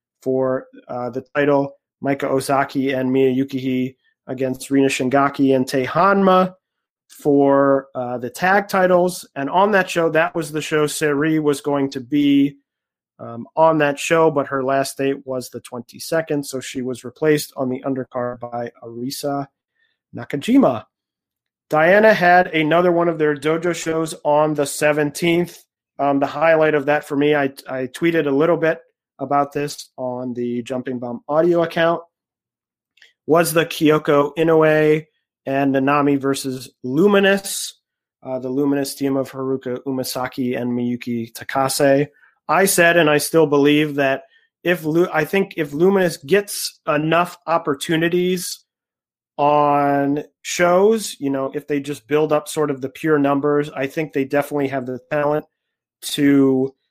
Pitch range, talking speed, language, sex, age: 135-165 Hz, 150 wpm, English, male, 30-49